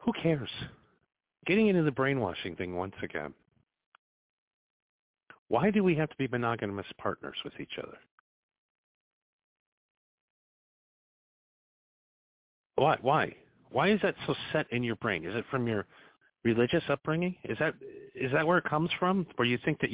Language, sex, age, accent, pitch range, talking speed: English, male, 40-59, American, 105-145 Hz, 145 wpm